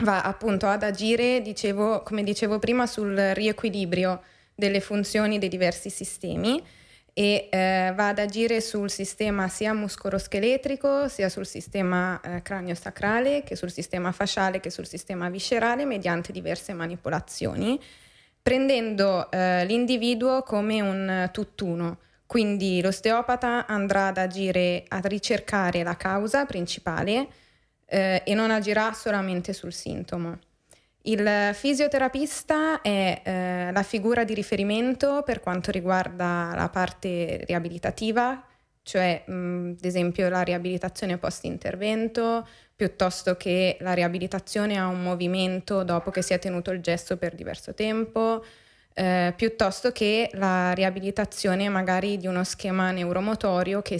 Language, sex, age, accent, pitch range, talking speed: Italian, female, 20-39, native, 180-215 Hz, 125 wpm